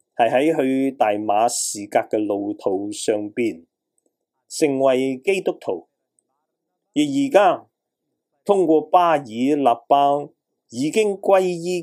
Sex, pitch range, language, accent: male, 130-180 Hz, Chinese, native